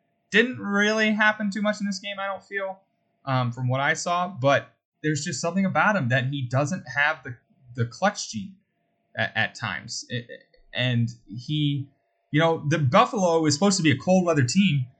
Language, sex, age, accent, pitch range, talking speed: English, male, 20-39, American, 115-170 Hz, 185 wpm